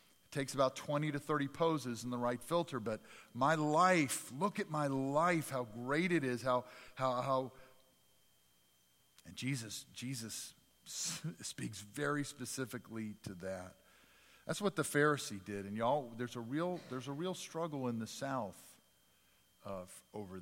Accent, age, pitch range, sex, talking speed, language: American, 50-69, 120-160 Hz, male, 150 wpm, English